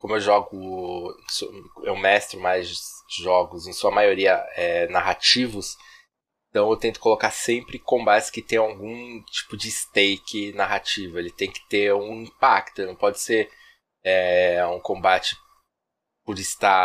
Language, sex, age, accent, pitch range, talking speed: Portuguese, male, 20-39, Brazilian, 95-120 Hz, 140 wpm